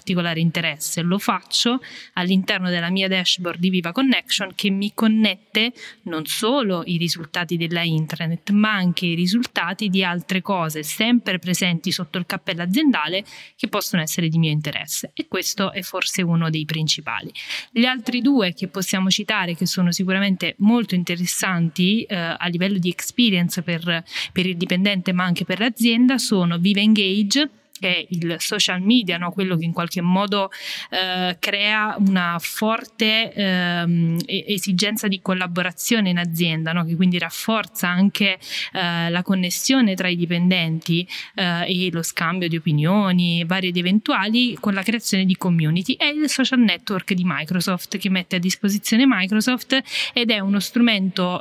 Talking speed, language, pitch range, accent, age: 155 wpm, Italian, 175-205 Hz, native, 20-39